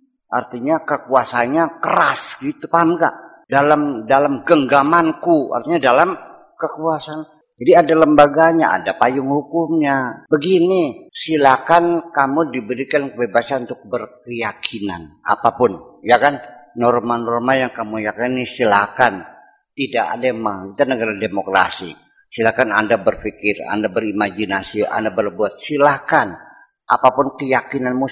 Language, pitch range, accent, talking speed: Indonesian, 125-170 Hz, native, 100 wpm